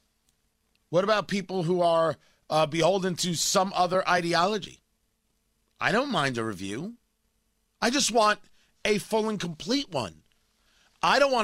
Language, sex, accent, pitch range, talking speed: English, male, American, 145-210 Hz, 140 wpm